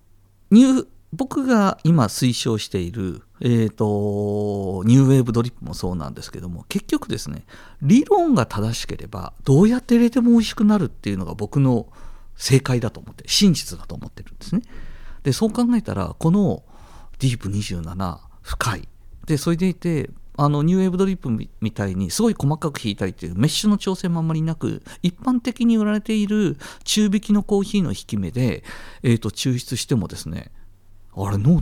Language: Japanese